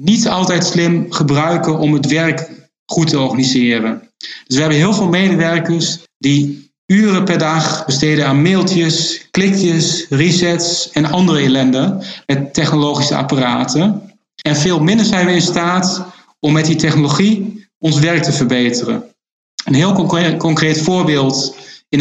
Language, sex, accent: English, male, Dutch